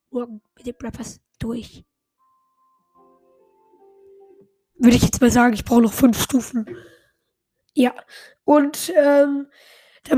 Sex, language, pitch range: female, German, 250-305 Hz